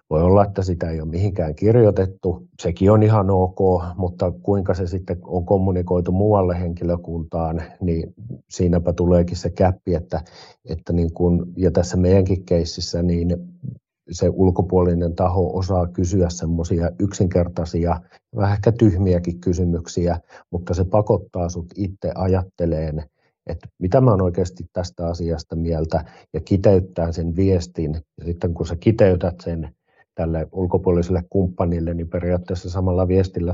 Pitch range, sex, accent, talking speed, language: 85-95 Hz, male, native, 130 wpm, Finnish